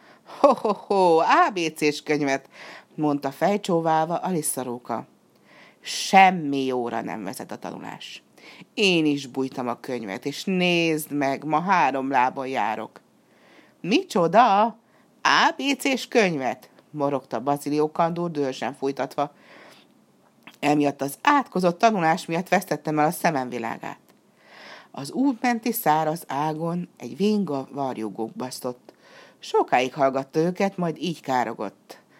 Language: Hungarian